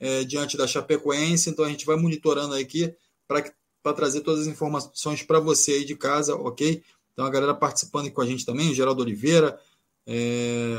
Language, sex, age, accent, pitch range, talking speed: Portuguese, male, 20-39, Brazilian, 145-175 Hz, 190 wpm